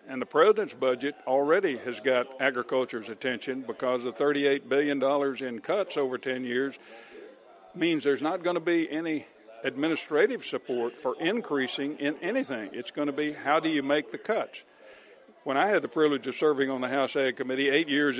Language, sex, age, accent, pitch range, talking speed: English, male, 60-79, American, 130-155 Hz, 180 wpm